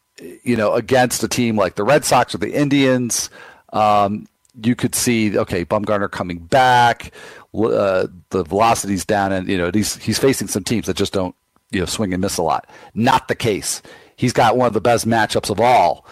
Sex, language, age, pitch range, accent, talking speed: male, English, 40-59, 95-115 Hz, American, 200 wpm